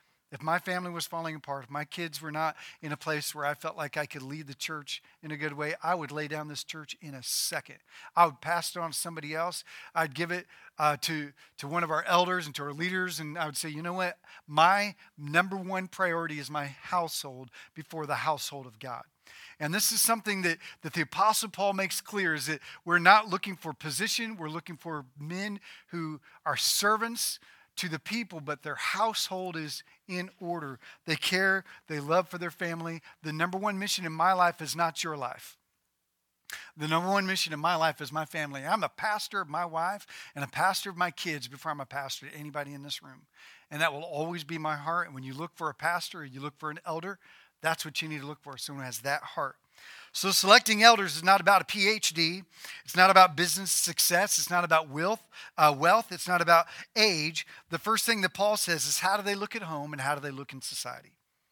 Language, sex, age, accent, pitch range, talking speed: English, male, 40-59, American, 150-185 Hz, 225 wpm